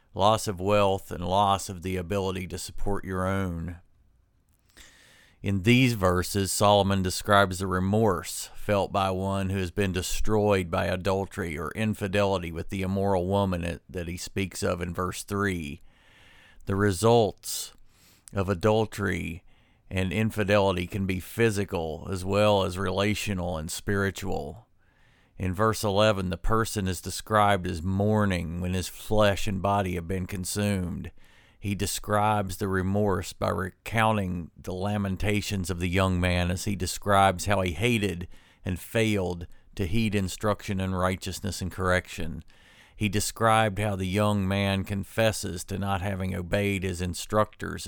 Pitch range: 90-105 Hz